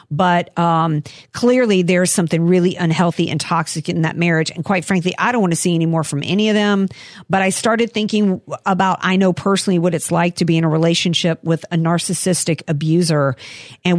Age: 50-69